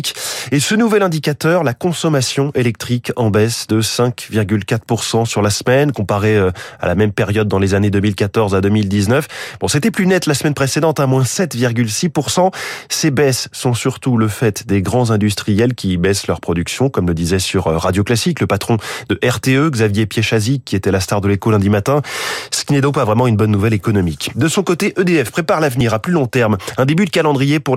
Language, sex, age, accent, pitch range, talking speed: French, male, 20-39, French, 105-140 Hz, 200 wpm